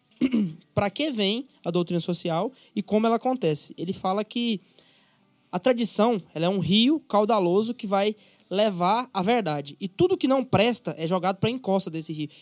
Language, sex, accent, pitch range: Portuguese, male, Brazilian, 175-230 Hz